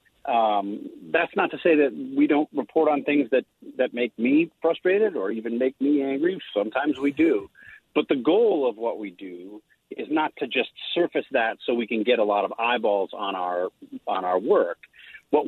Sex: male